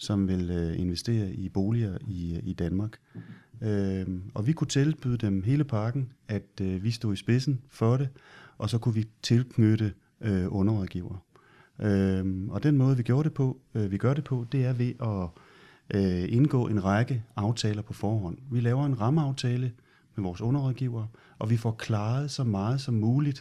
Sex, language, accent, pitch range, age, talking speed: male, Danish, native, 100-125 Hz, 30-49, 150 wpm